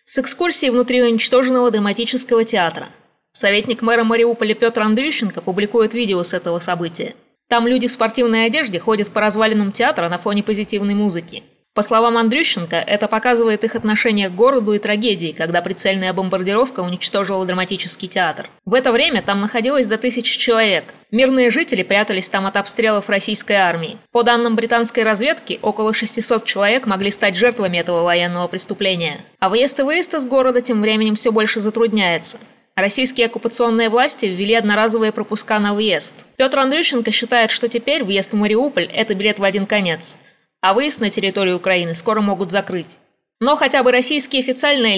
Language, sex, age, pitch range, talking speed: Russian, female, 20-39, 200-240 Hz, 160 wpm